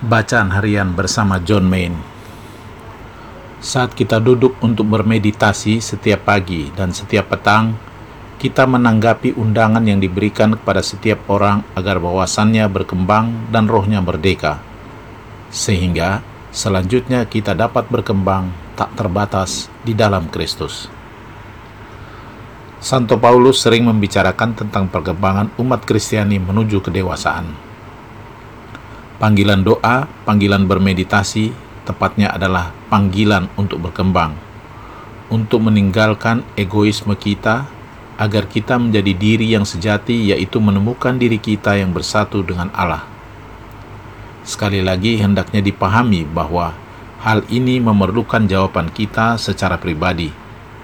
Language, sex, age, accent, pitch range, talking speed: Indonesian, male, 50-69, native, 100-115 Hz, 105 wpm